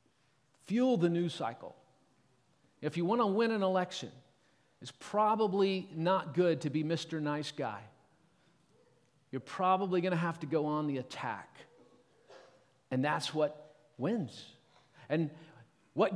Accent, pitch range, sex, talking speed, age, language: American, 150-195 Hz, male, 135 wpm, 40-59, English